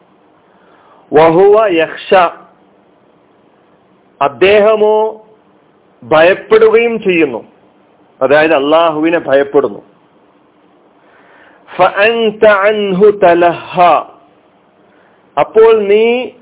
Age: 50-69